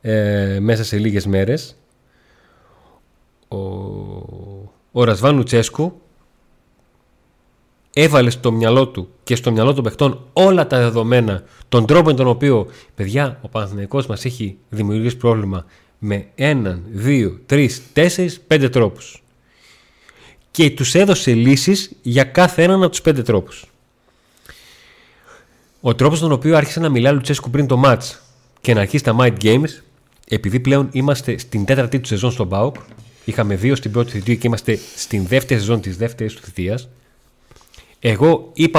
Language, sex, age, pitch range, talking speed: Greek, male, 30-49, 105-135 Hz, 145 wpm